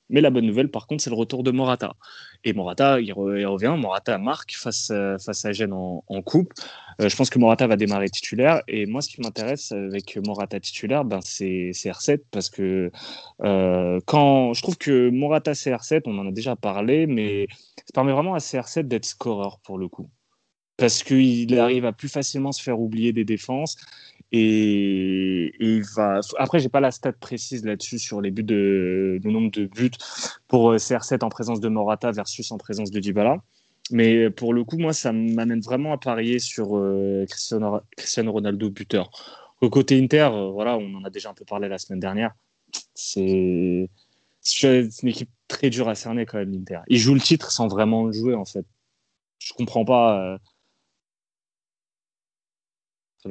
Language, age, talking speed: French, 20-39, 185 wpm